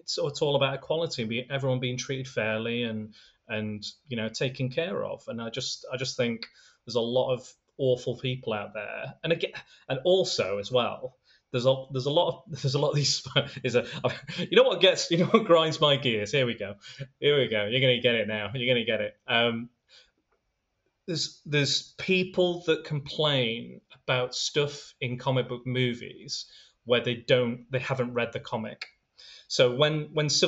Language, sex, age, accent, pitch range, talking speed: English, male, 20-39, British, 115-150 Hz, 195 wpm